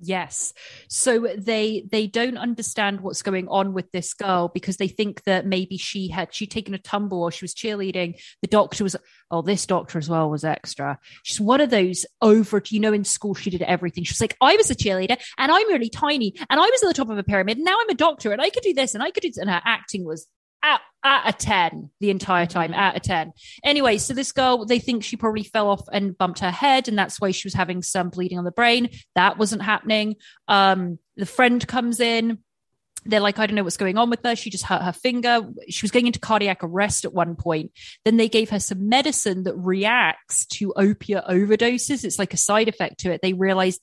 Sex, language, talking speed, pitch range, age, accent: female, English, 240 wpm, 185-230 Hz, 30-49, British